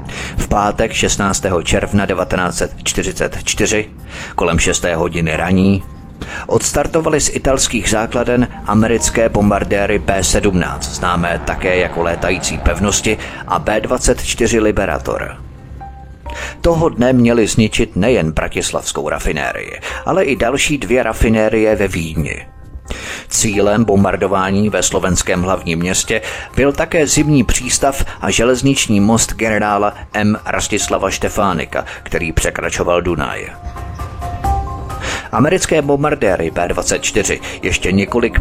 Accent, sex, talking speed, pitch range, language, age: native, male, 95 wpm, 85-115 Hz, Czech, 30-49